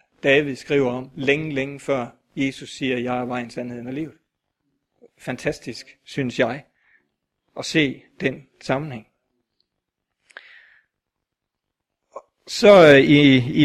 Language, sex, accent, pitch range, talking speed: Danish, male, native, 135-165 Hz, 115 wpm